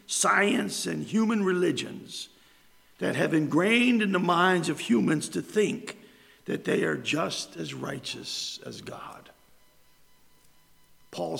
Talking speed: 120 wpm